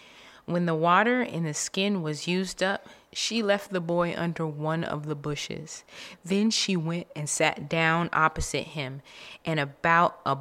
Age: 20-39